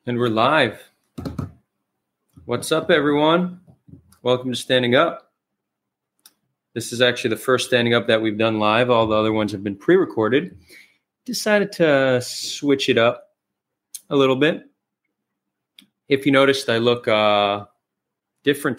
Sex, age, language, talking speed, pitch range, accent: male, 30-49, English, 135 wpm, 110-130 Hz, American